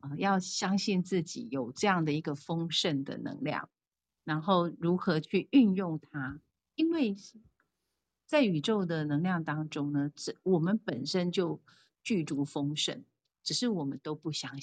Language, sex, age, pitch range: Chinese, female, 50-69, 150-205 Hz